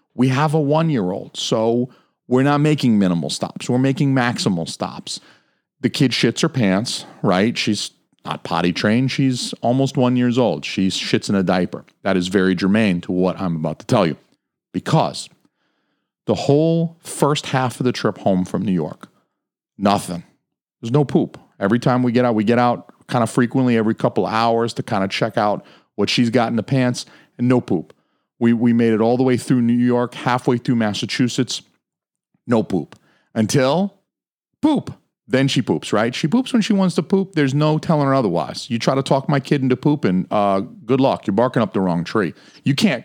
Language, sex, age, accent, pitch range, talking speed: English, male, 40-59, American, 100-145 Hz, 200 wpm